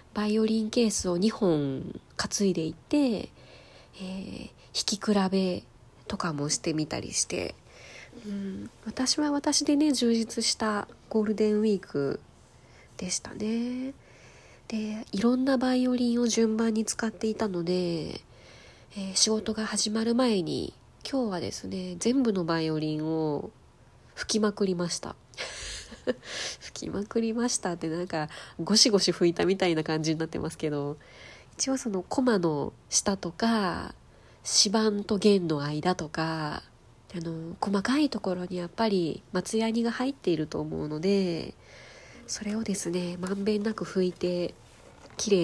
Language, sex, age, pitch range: Japanese, female, 20-39, 175-225 Hz